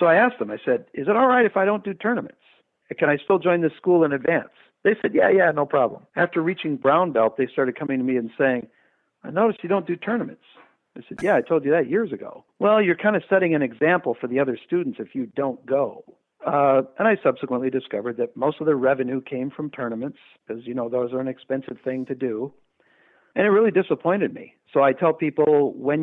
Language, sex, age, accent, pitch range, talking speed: English, male, 50-69, American, 130-180 Hz, 235 wpm